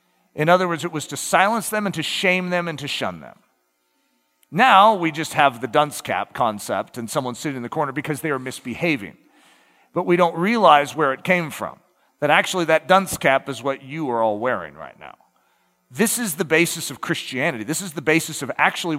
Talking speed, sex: 210 wpm, male